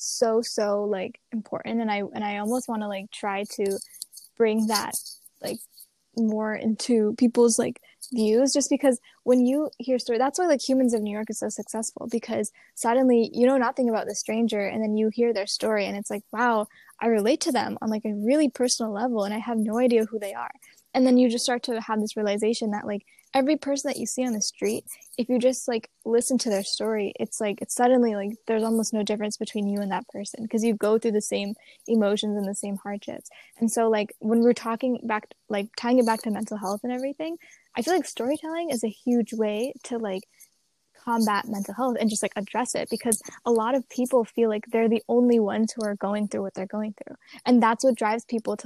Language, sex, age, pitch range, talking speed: English, female, 10-29, 210-250 Hz, 230 wpm